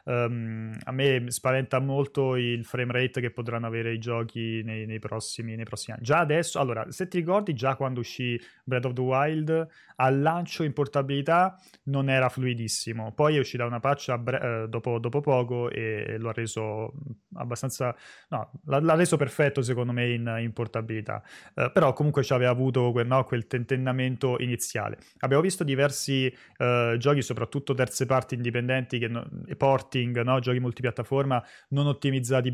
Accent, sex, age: native, male, 20-39